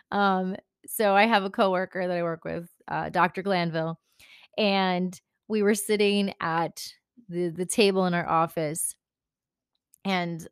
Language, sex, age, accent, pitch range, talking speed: English, female, 20-39, American, 170-200 Hz, 145 wpm